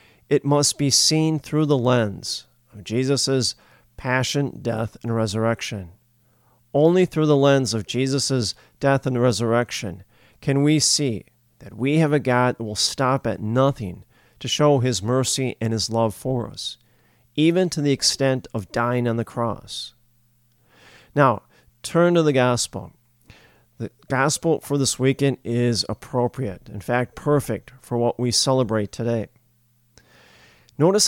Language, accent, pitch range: English, American, 115-140 Hz